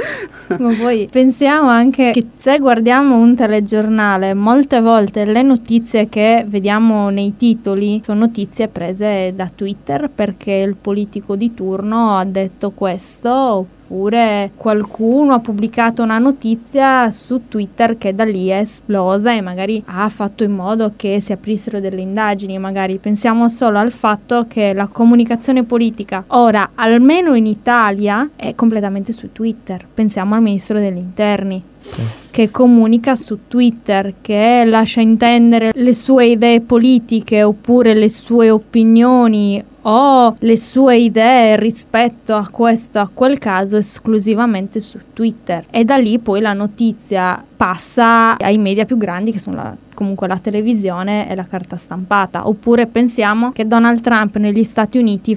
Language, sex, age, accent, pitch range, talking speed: English, female, 20-39, Italian, 200-235 Hz, 140 wpm